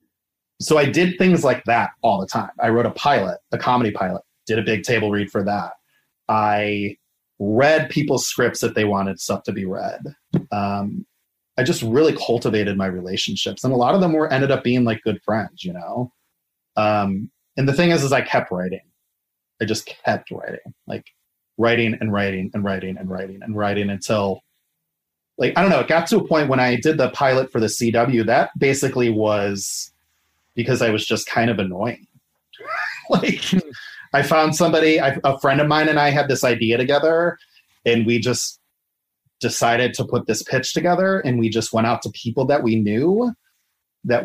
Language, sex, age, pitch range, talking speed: English, male, 30-49, 105-135 Hz, 190 wpm